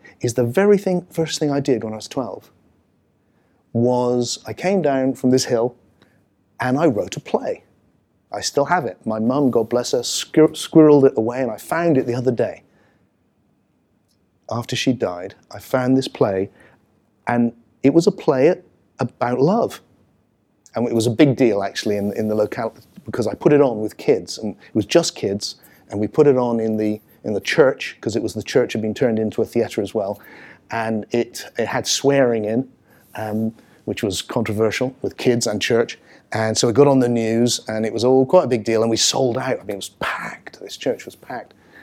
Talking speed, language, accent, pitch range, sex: 210 wpm, English, British, 110-135 Hz, male